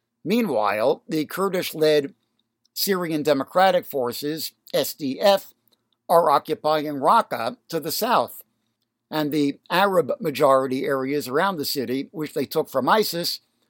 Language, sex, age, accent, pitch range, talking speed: English, male, 60-79, American, 130-180 Hz, 110 wpm